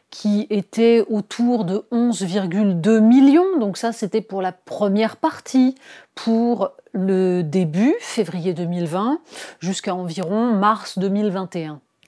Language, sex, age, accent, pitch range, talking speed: French, female, 30-49, French, 175-255 Hz, 110 wpm